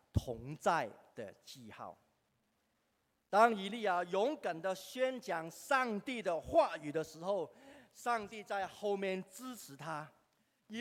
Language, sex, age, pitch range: Chinese, male, 50-69, 155-230 Hz